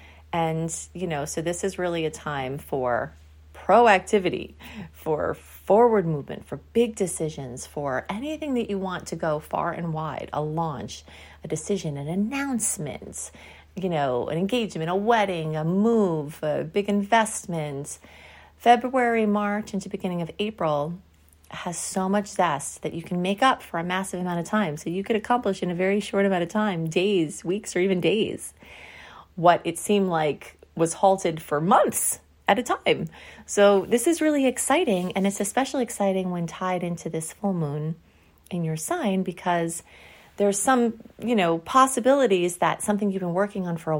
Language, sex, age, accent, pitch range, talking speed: English, female, 30-49, American, 160-205 Hz, 170 wpm